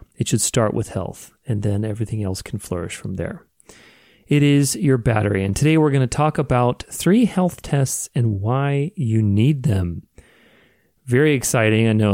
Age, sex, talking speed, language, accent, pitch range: 30-49, male, 180 wpm, English, American, 105-140 Hz